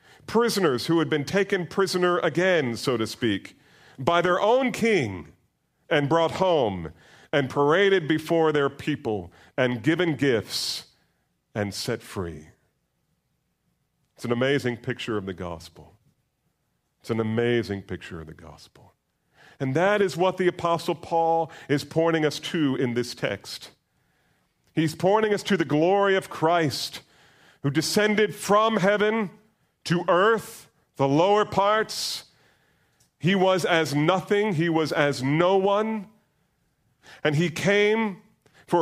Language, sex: English, male